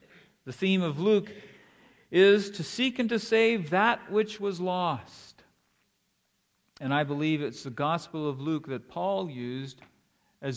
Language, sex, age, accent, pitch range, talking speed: English, male, 50-69, American, 130-185 Hz, 150 wpm